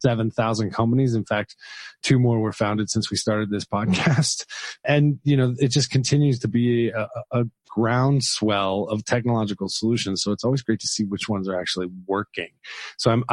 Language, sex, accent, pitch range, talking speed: English, male, American, 105-130 Hz, 180 wpm